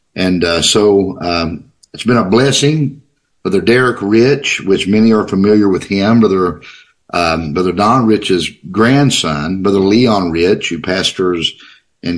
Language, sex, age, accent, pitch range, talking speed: English, male, 50-69, American, 95-120 Hz, 145 wpm